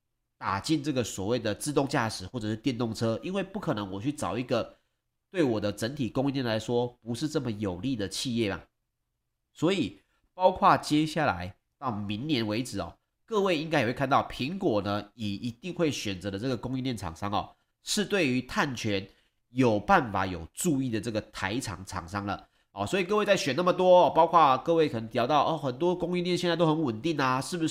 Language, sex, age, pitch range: Chinese, male, 30-49, 110-160 Hz